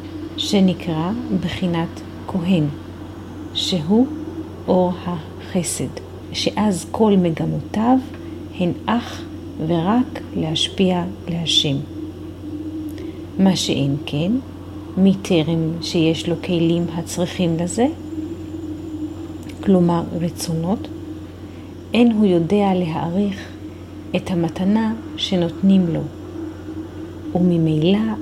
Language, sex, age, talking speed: Hebrew, female, 40-59, 70 wpm